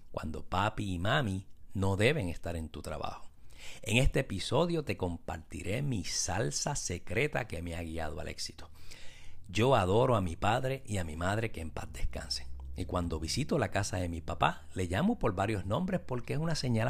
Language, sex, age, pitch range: Spanish, male, 60-79, 85-120 Hz